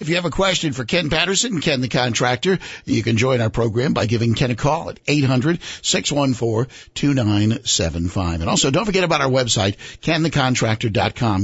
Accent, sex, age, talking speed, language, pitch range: American, male, 50-69, 165 wpm, English, 115-160 Hz